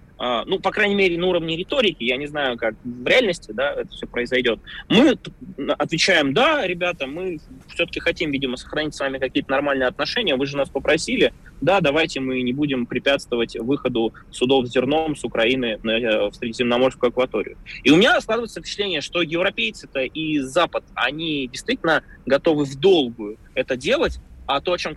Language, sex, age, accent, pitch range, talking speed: Russian, male, 20-39, native, 125-165 Hz, 165 wpm